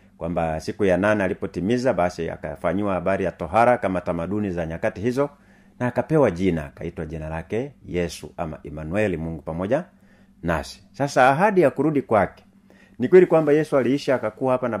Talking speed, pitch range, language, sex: 160 wpm, 90-120 Hz, Swahili, male